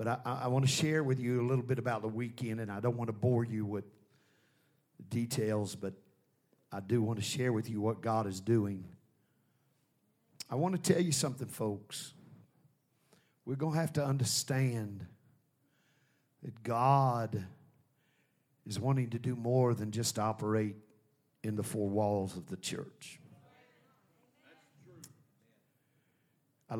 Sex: male